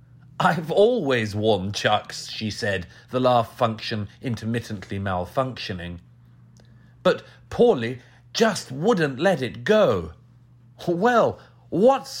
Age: 40-59